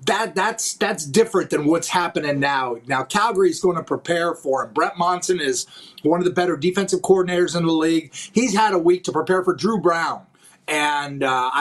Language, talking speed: English, 200 wpm